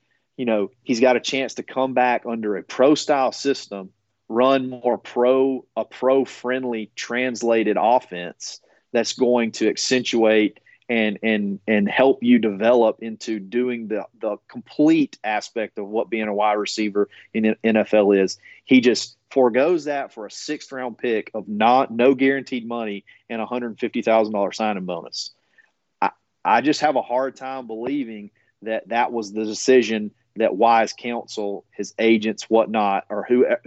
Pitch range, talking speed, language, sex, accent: 105-125 Hz, 155 wpm, English, male, American